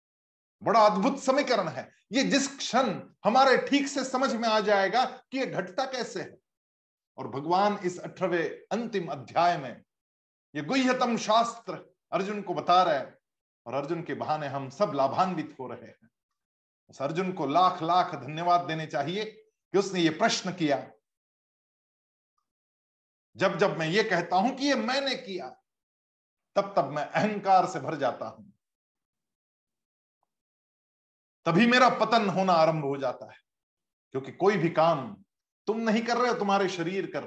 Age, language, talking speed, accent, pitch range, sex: 50-69, Hindi, 150 wpm, native, 155-230 Hz, male